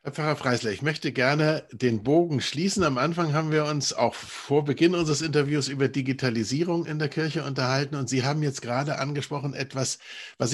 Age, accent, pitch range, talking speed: 50-69, German, 135-165 Hz, 190 wpm